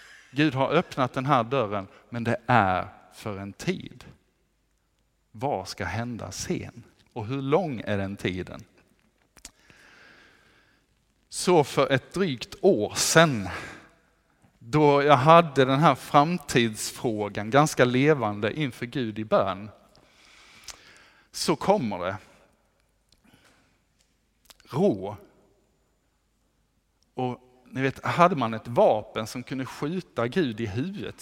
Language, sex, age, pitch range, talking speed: Swedish, male, 50-69, 110-145 Hz, 110 wpm